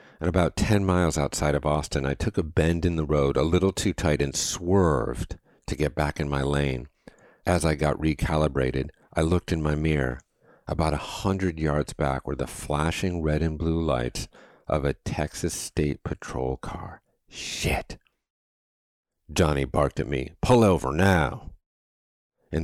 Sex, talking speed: male, 160 wpm